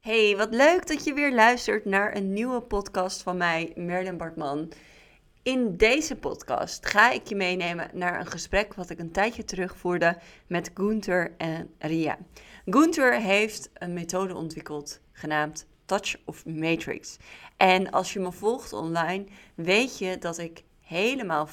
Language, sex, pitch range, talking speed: Dutch, female, 160-195 Hz, 150 wpm